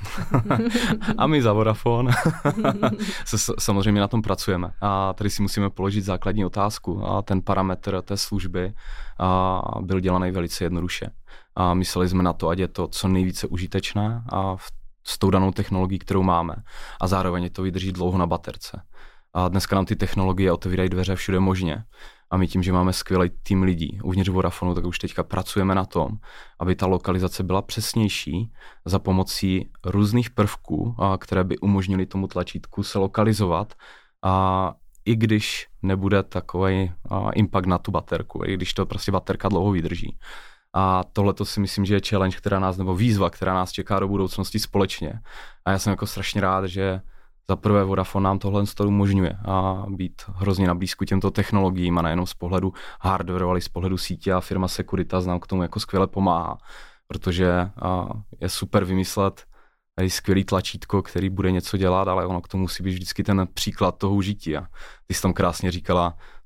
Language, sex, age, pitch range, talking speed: Czech, male, 20-39, 90-100 Hz, 175 wpm